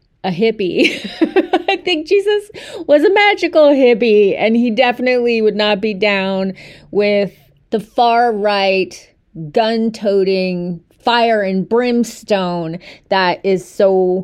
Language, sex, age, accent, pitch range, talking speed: English, female, 30-49, American, 190-235 Hz, 120 wpm